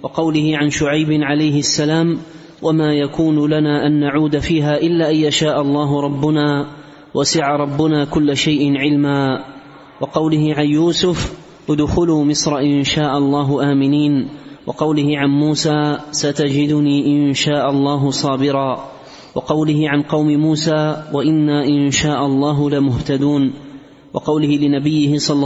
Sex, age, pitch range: male, 30-49, 140-150 Hz